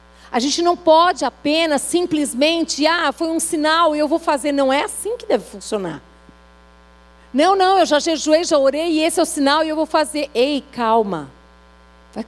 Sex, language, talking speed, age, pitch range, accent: female, Portuguese, 190 wpm, 50-69, 205-315 Hz, Brazilian